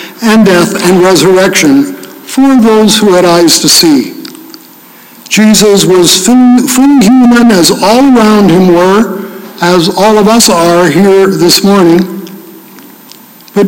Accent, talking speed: American, 125 wpm